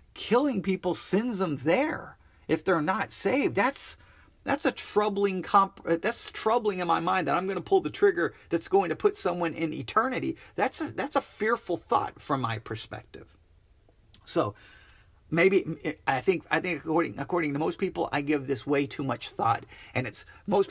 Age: 40-59